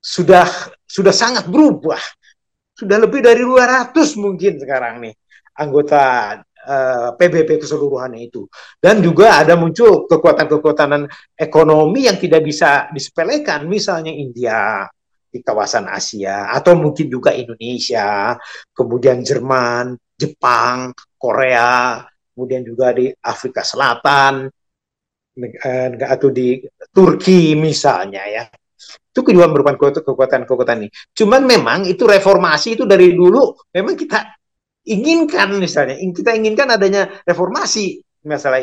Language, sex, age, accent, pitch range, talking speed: Indonesian, male, 50-69, native, 135-195 Hz, 110 wpm